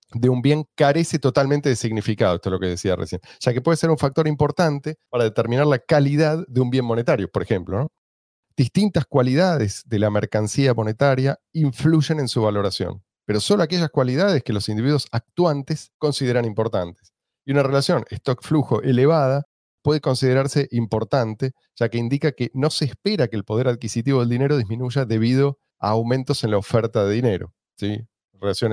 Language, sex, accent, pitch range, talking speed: Spanish, male, Argentinian, 110-150 Hz, 175 wpm